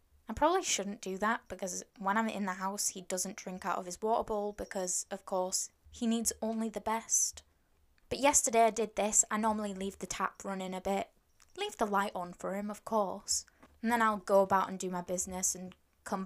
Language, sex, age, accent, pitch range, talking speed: English, female, 10-29, British, 195-235 Hz, 220 wpm